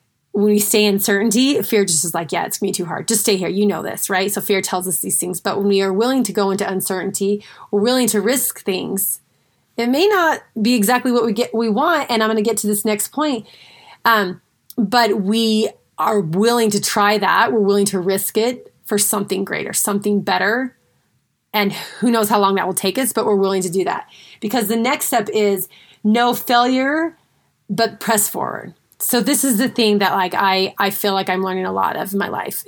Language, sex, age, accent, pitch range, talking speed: English, female, 30-49, American, 195-230 Hz, 230 wpm